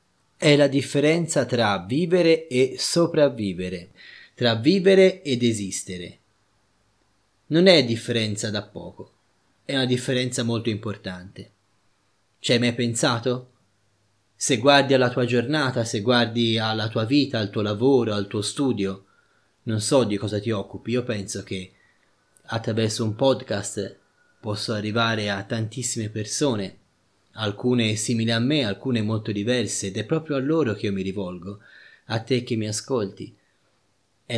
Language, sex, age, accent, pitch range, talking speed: Italian, male, 30-49, native, 100-125 Hz, 140 wpm